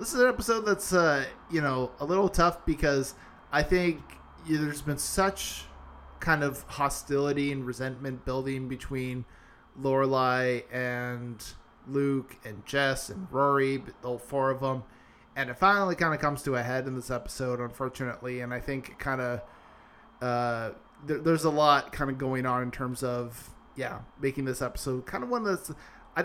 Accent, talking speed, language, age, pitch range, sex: American, 170 wpm, English, 20-39, 125-145 Hz, male